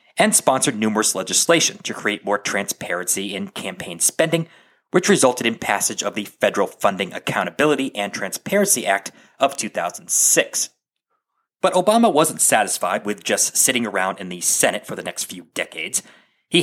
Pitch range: 105-160 Hz